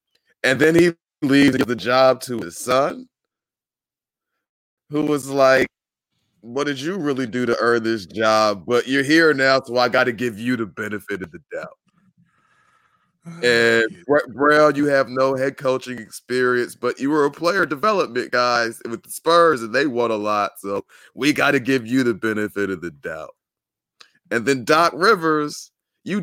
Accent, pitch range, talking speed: American, 130-180 Hz, 175 wpm